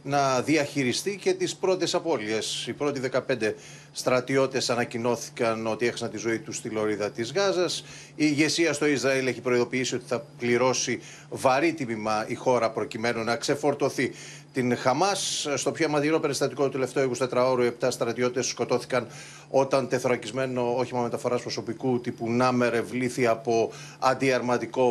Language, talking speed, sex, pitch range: Greek, 140 wpm, male, 120-150 Hz